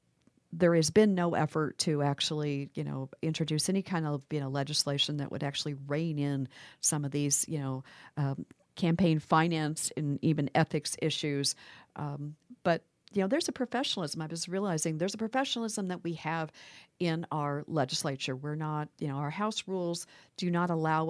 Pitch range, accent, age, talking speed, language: 145-180 Hz, American, 50-69, 175 wpm, English